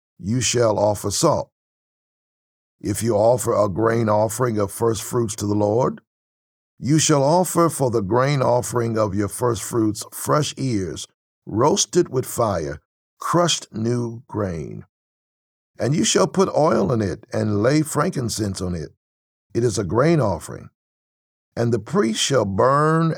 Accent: American